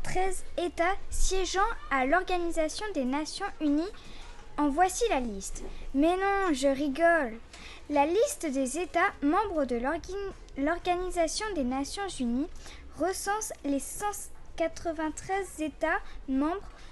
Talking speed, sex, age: 110 wpm, female, 20-39